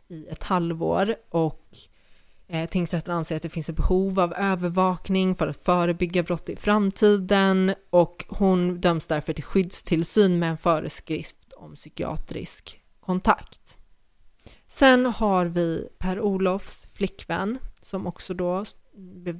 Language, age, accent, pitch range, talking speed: Swedish, 30-49, native, 160-185 Hz, 125 wpm